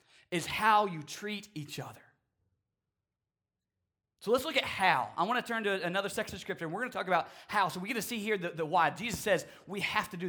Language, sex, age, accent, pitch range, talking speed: English, male, 20-39, American, 150-200 Hz, 245 wpm